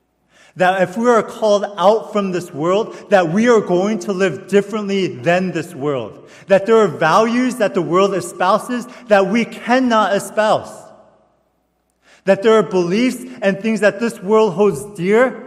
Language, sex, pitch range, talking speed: English, male, 185-220 Hz, 165 wpm